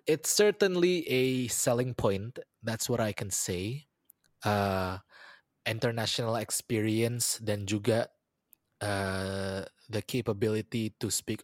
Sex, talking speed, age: male, 105 wpm, 20-39